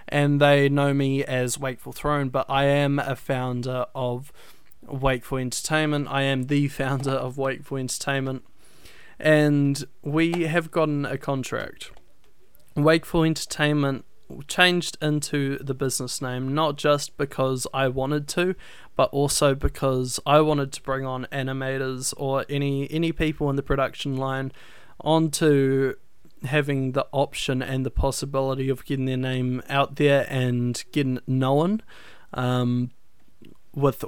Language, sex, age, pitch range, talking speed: English, male, 20-39, 130-145 Hz, 135 wpm